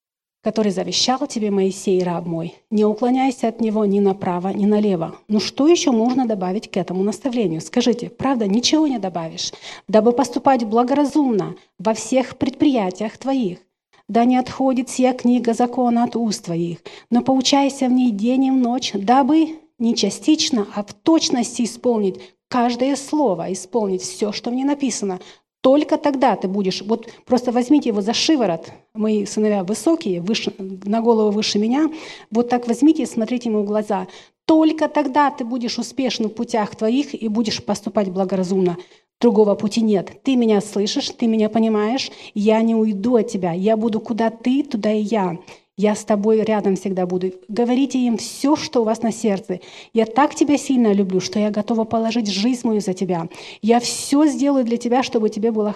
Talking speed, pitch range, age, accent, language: 170 wpm, 205-255 Hz, 40-59, native, Russian